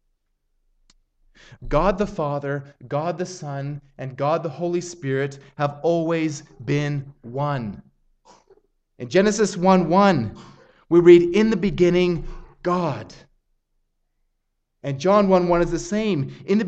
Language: English